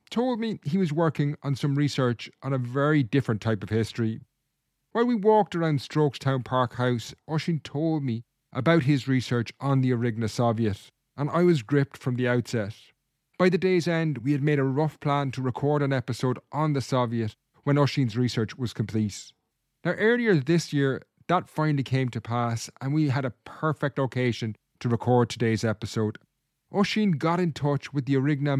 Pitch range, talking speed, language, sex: 120-150 Hz, 185 wpm, English, male